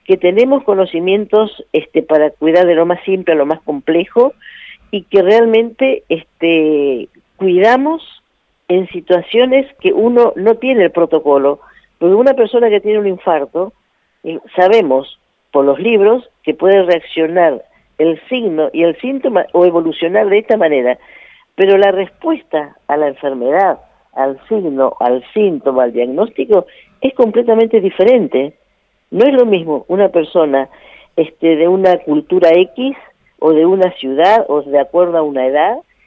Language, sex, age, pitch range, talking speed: Spanish, female, 50-69, 155-220 Hz, 145 wpm